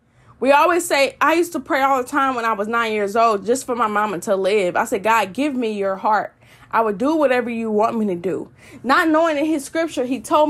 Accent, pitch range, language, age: American, 205-270 Hz, English, 10-29